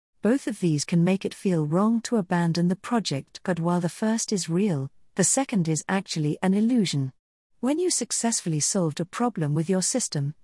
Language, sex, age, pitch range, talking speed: English, female, 50-69, 160-220 Hz, 190 wpm